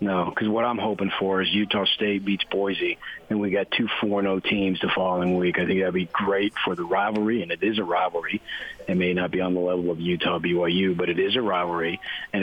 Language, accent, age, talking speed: English, American, 40-59, 235 wpm